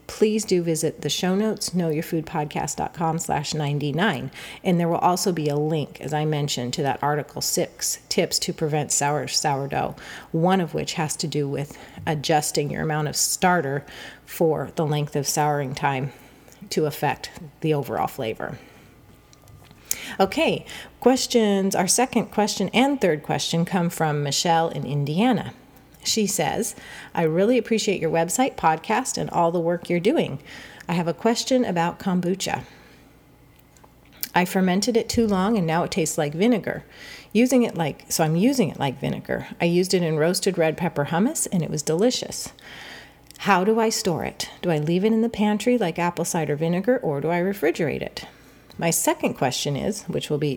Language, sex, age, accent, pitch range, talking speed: English, female, 30-49, American, 150-200 Hz, 170 wpm